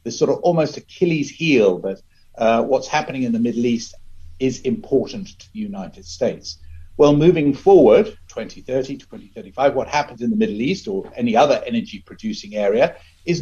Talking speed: 170 wpm